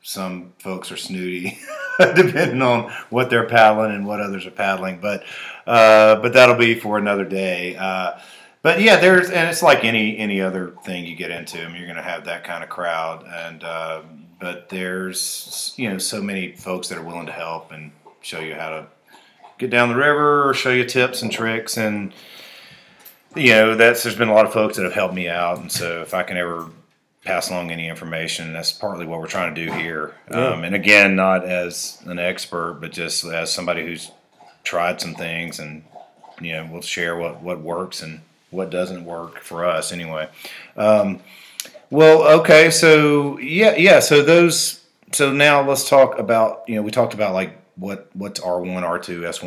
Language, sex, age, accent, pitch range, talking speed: English, male, 40-59, American, 85-115 Hz, 190 wpm